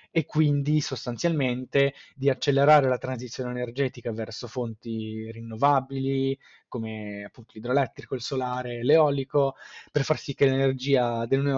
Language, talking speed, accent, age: Italian, 120 wpm, native, 20-39